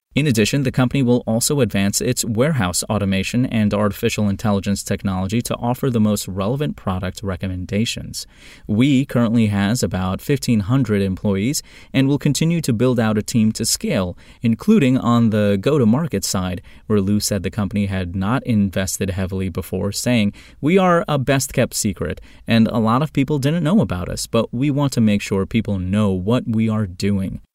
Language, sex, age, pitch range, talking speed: English, male, 30-49, 100-125 Hz, 170 wpm